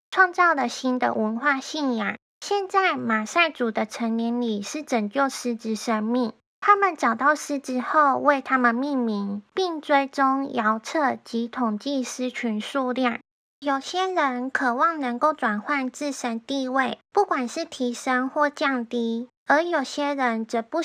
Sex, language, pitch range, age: female, Chinese, 235-305 Hz, 10-29